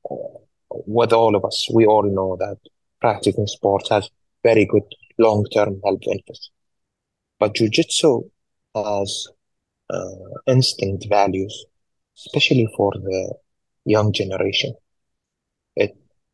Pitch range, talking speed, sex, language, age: 100-115 Hz, 105 wpm, male, English, 30-49